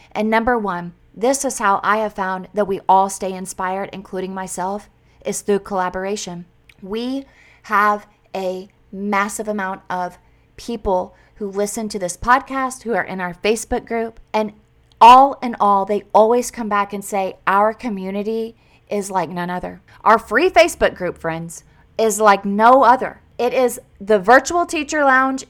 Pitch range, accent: 200-260 Hz, American